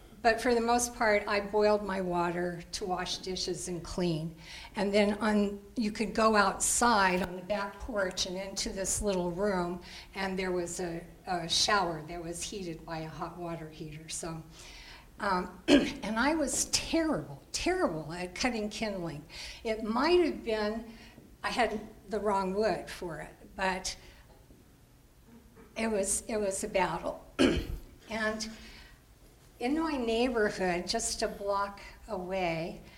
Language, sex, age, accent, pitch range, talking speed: English, female, 60-79, American, 185-230 Hz, 140 wpm